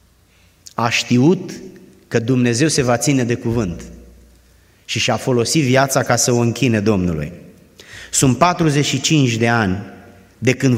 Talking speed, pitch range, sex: 140 wpm, 100-140 Hz, male